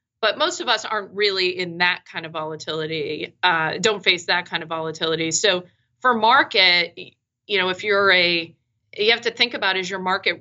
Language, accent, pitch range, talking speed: English, American, 170-200 Hz, 195 wpm